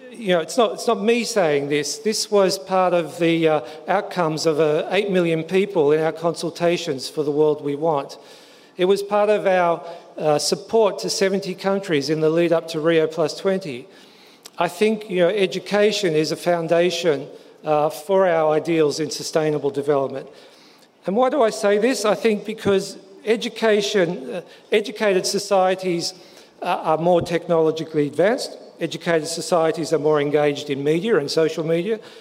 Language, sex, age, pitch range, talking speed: Turkish, male, 50-69, 155-195 Hz, 165 wpm